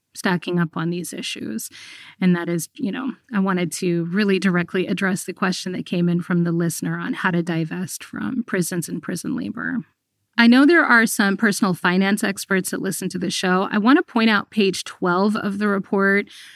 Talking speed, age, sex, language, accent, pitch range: 205 wpm, 30-49, female, English, American, 185-225 Hz